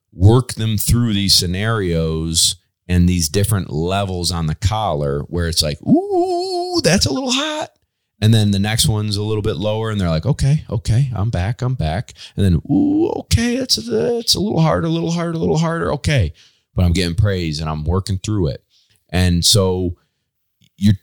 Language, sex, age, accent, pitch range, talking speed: English, male, 30-49, American, 85-110 Hz, 190 wpm